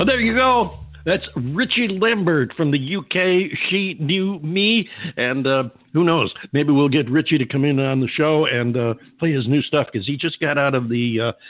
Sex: male